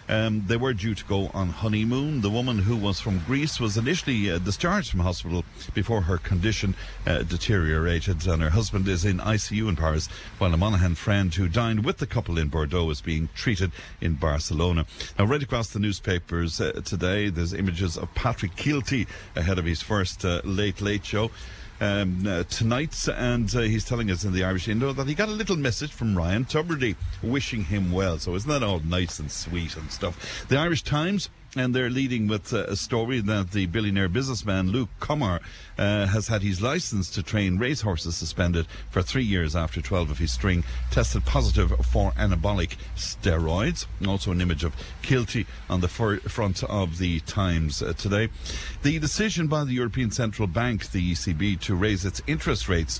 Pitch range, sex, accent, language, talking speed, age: 90-115 Hz, male, Irish, English, 185 wpm, 60-79